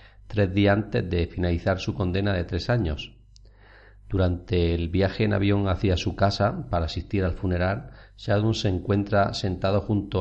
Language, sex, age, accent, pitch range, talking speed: Spanish, male, 40-59, Spanish, 90-110 Hz, 160 wpm